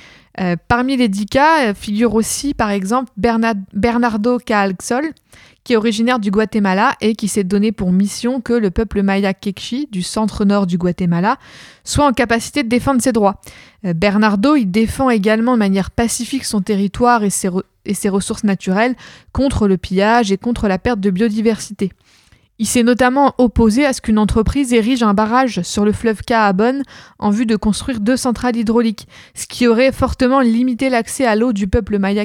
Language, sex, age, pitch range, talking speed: French, female, 20-39, 205-245 Hz, 185 wpm